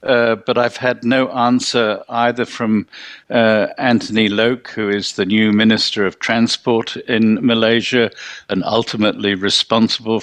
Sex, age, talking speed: male, 50-69, 135 wpm